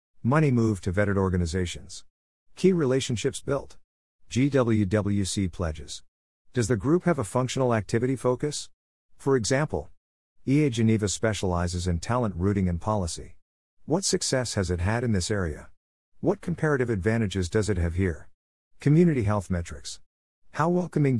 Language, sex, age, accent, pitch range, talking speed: English, male, 50-69, American, 90-125 Hz, 135 wpm